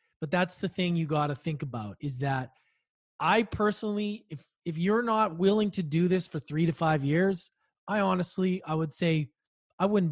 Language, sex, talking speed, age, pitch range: English, male, 195 wpm, 20-39, 150-185 Hz